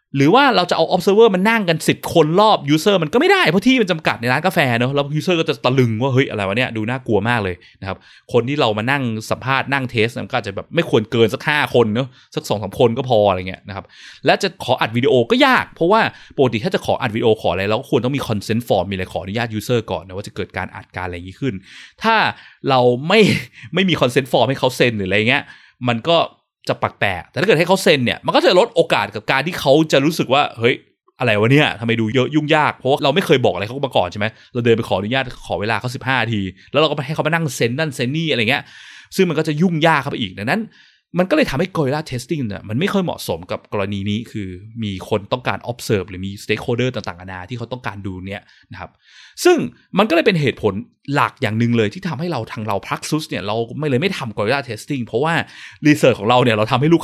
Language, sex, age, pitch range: Thai, male, 20-39, 110-155 Hz